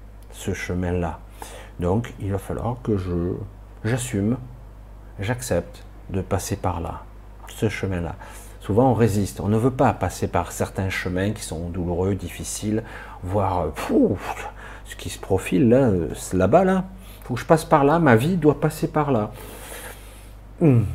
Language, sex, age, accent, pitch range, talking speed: French, male, 50-69, French, 90-115 Hz, 150 wpm